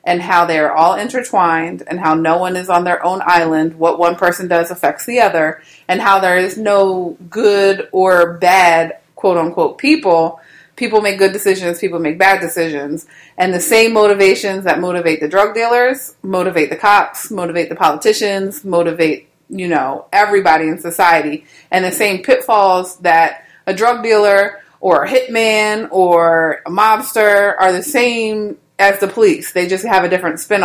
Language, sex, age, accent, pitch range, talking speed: English, female, 30-49, American, 170-205 Hz, 170 wpm